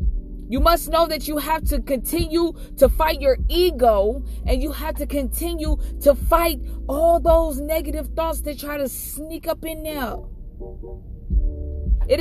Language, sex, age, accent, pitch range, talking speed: English, female, 20-39, American, 205-295 Hz, 150 wpm